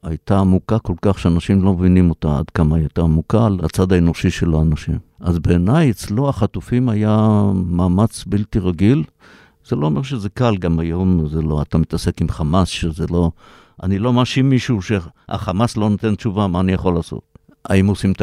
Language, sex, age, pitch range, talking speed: Hebrew, male, 60-79, 90-110 Hz, 180 wpm